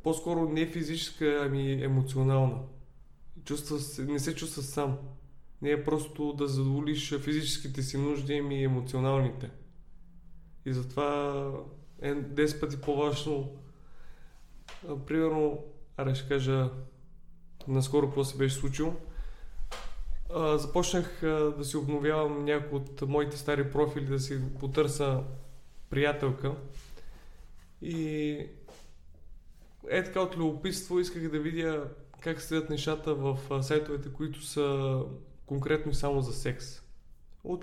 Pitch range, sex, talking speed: 135-150 Hz, male, 115 wpm